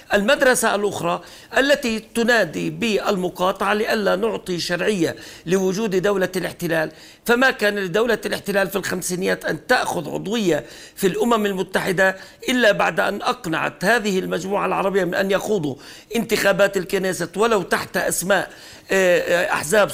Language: Arabic